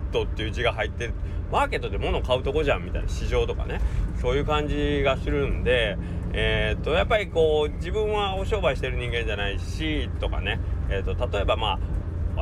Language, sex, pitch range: Japanese, male, 75-100 Hz